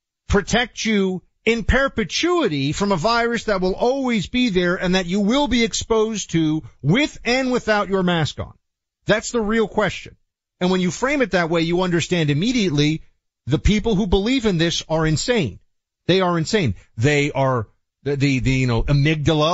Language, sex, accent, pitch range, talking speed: English, male, American, 120-190 Hz, 180 wpm